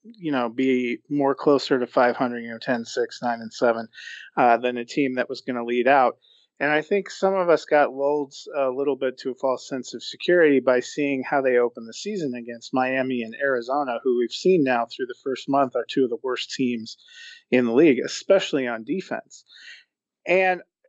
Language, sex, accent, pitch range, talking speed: English, male, American, 125-145 Hz, 215 wpm